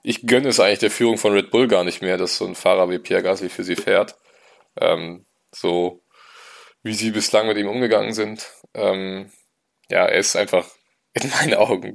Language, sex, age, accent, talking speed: German, male, 20-39, German, 195 wpm